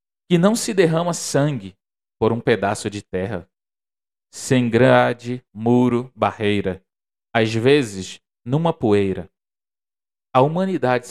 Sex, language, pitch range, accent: male, Portuguese, 100-140 Hz, Brazilian